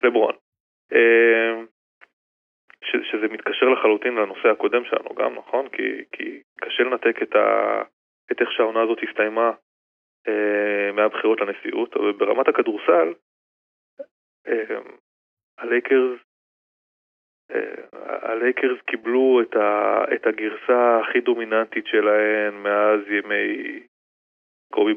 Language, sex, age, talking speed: Hebrew, male, 20-39, 85 wpm